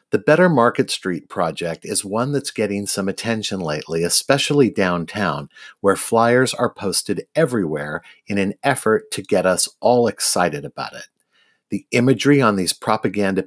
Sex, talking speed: male, 150 wpm